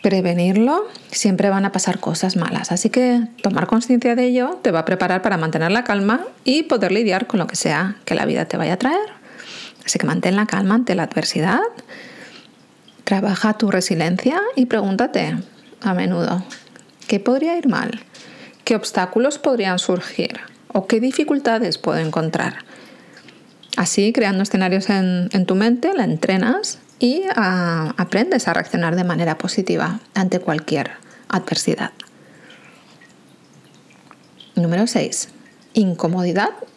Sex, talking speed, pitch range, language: female, 140 wpm, 185-245 Hz, Spanish